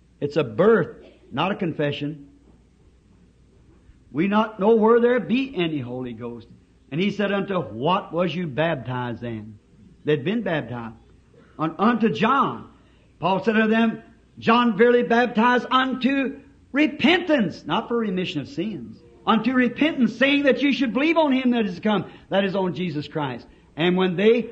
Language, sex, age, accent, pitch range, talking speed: English, male, 60-79, American, 150-240 Hz, 155 wpm